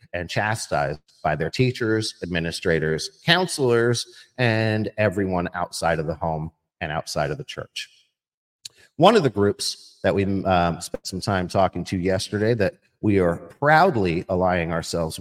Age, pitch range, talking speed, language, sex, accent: 50-69, 95-140 Hz, 145 wpm, English, male, American